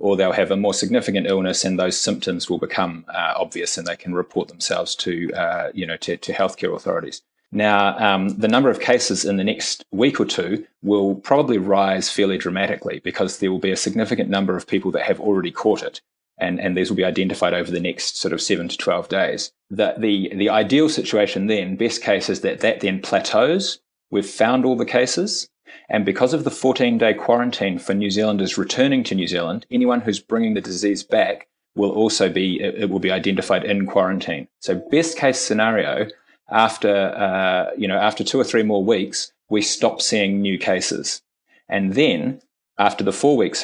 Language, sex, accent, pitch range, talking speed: English, male, Australian, 95-120 Hz, 200 wpm